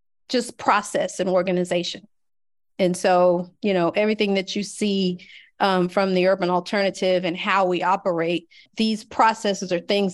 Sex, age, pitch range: female, 40-59, 185-225 Hz